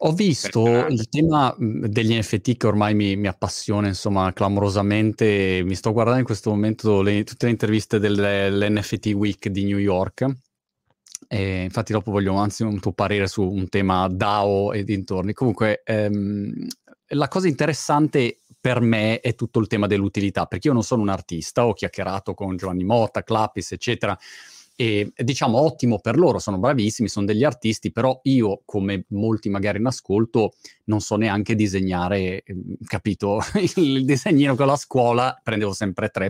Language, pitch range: Italian, 100-115 Hz